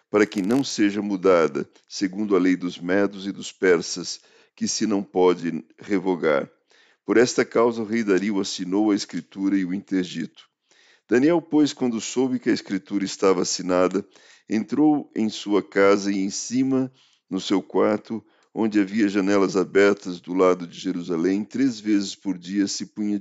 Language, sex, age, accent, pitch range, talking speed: Portuguese, male, 50-69, Brazilian, 95-110 Hz, 165 wpm